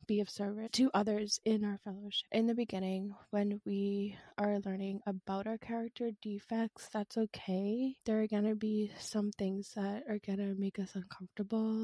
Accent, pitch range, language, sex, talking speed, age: American, 200-235 Hz, English, female, 170 wpm, 20-39